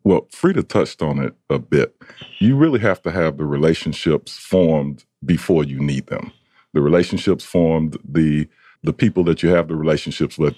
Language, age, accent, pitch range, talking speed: English, 40-59, American, 75-85 Hz, 175 wpm